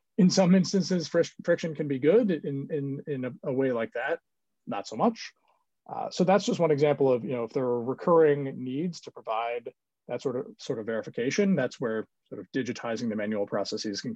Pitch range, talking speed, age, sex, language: 130-170 Hz, 210 wpm, 30-49, male, English